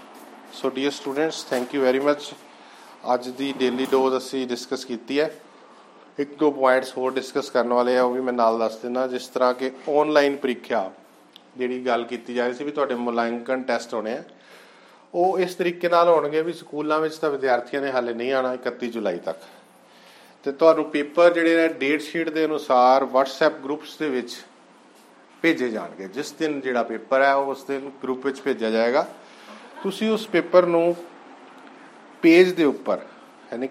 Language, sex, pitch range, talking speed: Punjabi, male, 130-160 Hz, 175 wpm